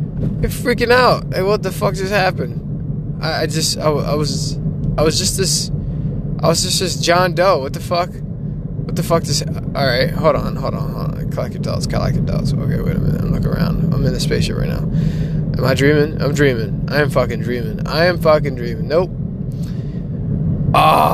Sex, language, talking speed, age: male, English, 205 wpm, 20-39